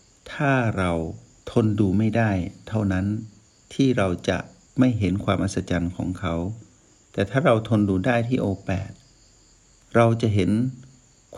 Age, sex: 60-79, male